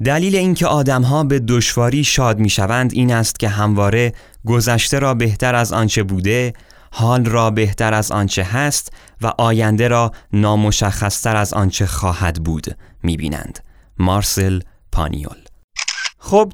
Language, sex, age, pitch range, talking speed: Persian, male, 30-49, 110-155 Hz, 125 wpm